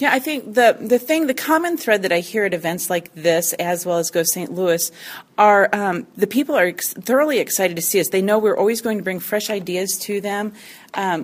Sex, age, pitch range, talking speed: female, 40-59, 170-215 Hz, 240 wpm